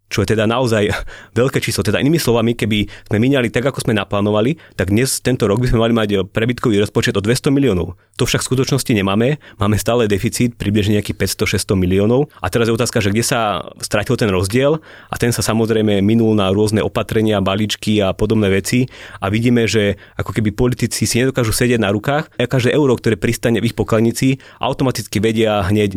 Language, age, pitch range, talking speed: Slovak, 30-49, 105-125 Hz, 195 wpm